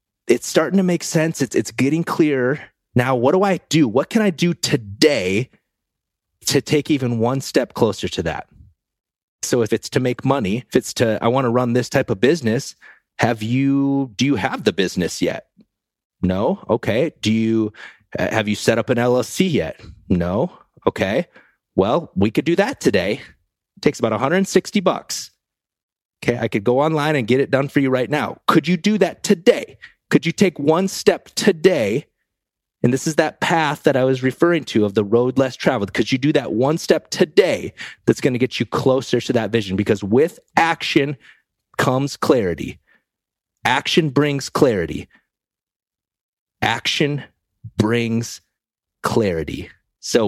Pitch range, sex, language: 110-155 Hz, male, English